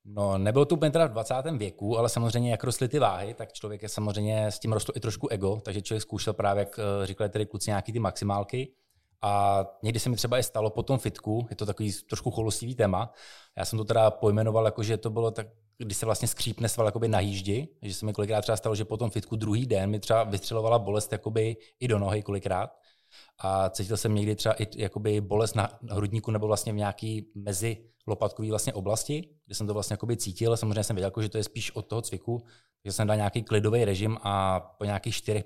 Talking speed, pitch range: 220 wpm, 105-115 Hz